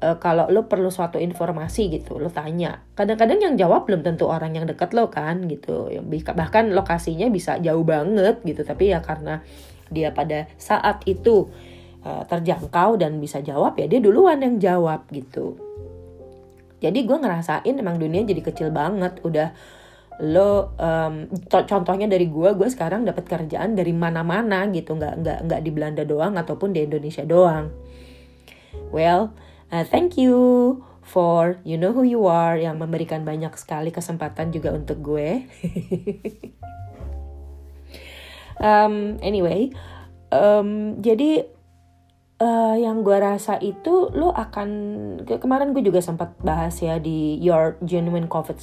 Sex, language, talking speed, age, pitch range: female, Indonesian, 140 wpm, 30-49, 155-200 Hz